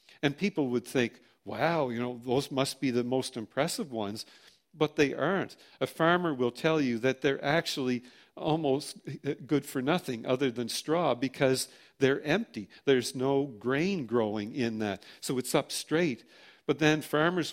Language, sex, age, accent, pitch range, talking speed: English, male, 50-69, American, 120-150 Hz, 165 wpm